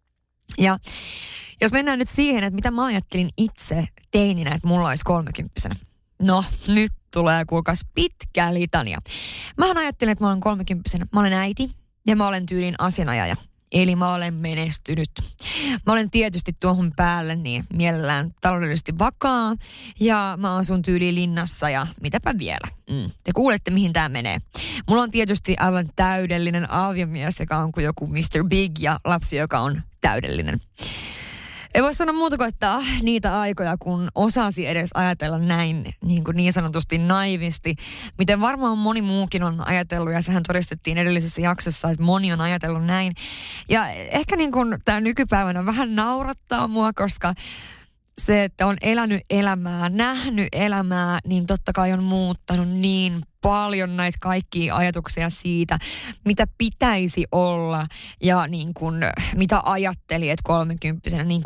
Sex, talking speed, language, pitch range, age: female, 150 wpm, Finnish, 165-210 Hz, 20-39